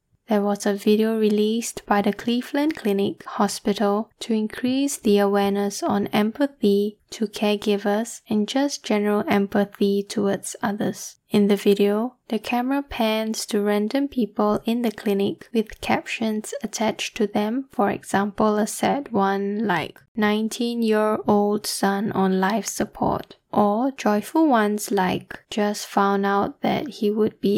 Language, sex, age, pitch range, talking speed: English, female, 10-29, 205-225 Hz, 140 wpm